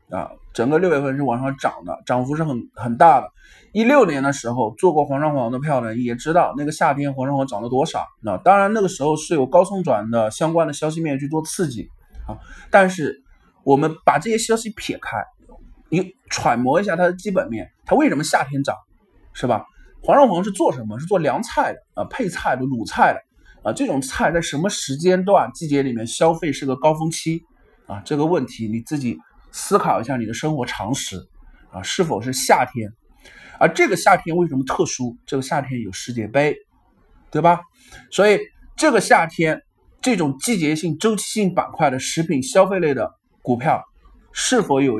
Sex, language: male, Chinese